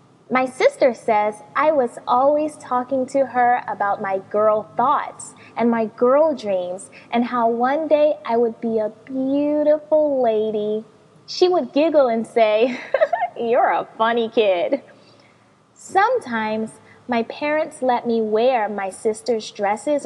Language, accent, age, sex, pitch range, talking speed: English, American, 20-39, female, 220-305 Hz, 135 wpm